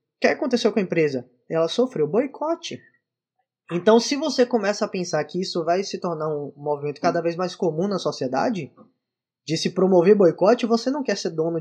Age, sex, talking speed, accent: 10-29, male, 190 wpm, Brazilian